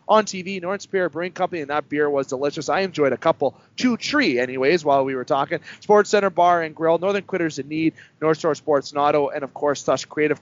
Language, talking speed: English, 230 wpm